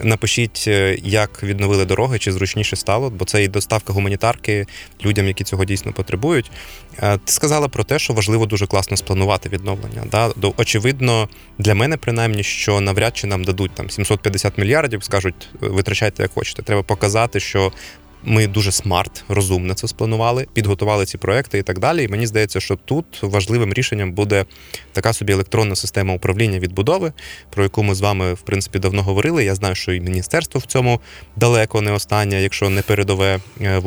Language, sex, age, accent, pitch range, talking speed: Ukrainian, male, 20-39, native, 95-110 Hz, 170 wpm